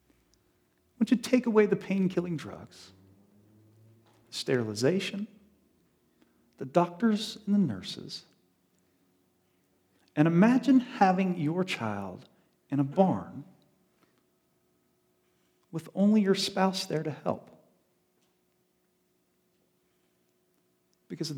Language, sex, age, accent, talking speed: English, male, 40-59, American, 80 wpm